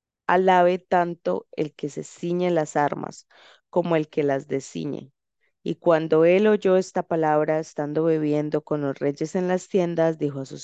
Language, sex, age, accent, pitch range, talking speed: Spanish, female, 20-39, Colombian, 155-180 Hz, 170 wpm